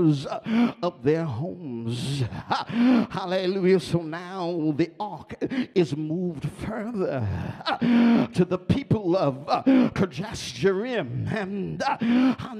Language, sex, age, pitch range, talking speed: English, male, 50-69, 170-230 Hz, 100 wpm